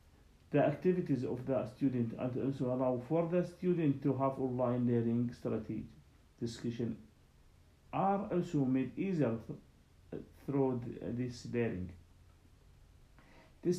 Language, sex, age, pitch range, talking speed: English, male, 50-69, 115-145 Hz, 110 wpm